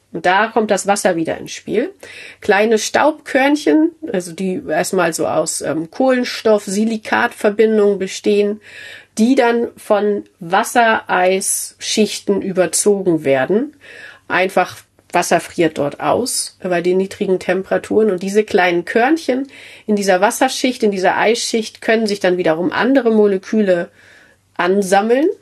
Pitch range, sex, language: 180-225 Hz, female, German